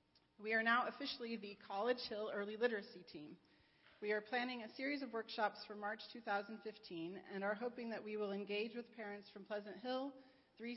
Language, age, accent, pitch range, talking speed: English, 40-59, American, 200-235 Hz, 185 wpm